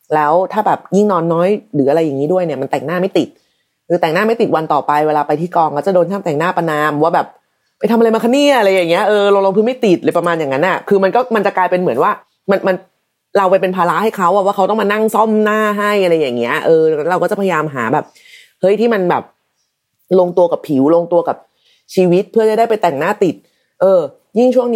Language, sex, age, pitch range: Thai, female, 30-49, 155-210 Hz